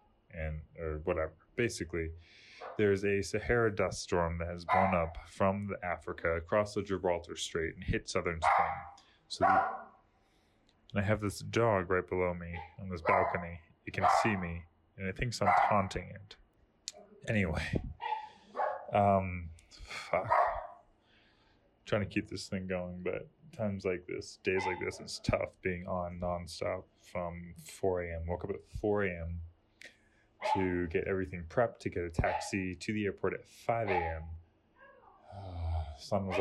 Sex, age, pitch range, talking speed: male, 20-39, 85-110 Hz, 150 wpm